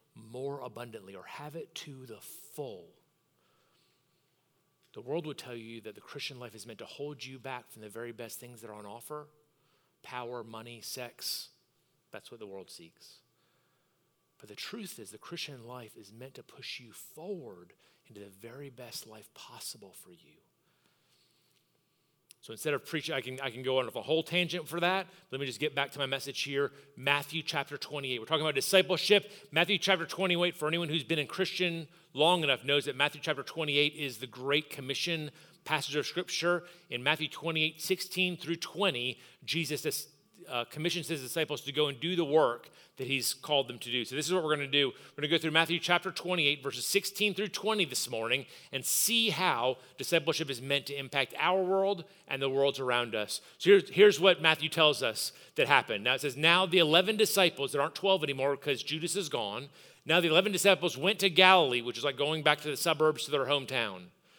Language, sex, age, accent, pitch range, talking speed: English, male, 40-59, American, 135-175 Hz, 205 wpm